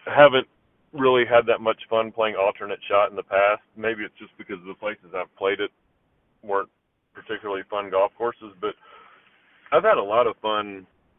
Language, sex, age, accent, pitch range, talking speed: English, male, 40-59, American, 100-115 Hz, 190 wpm